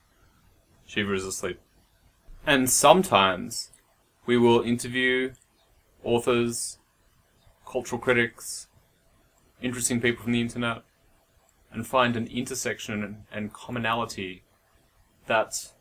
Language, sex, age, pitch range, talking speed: English, male, 30-49, 105-125 Hz, 85 wpm